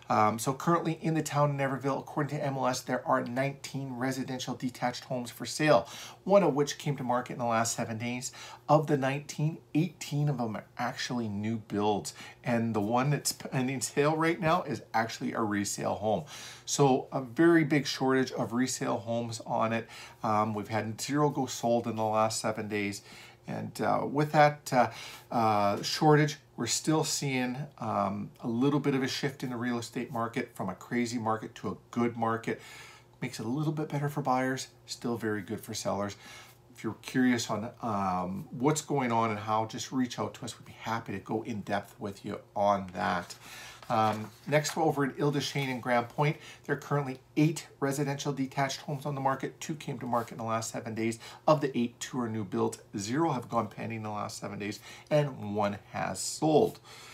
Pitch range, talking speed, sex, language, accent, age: 115-145 Hz, 205 wpm, male, English, American, 40-59